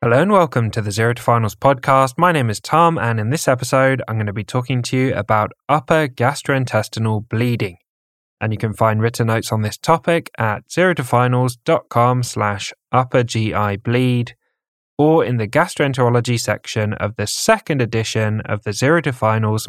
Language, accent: English, British